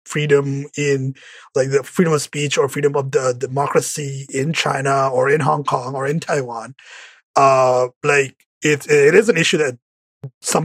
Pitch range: 135-175 Hz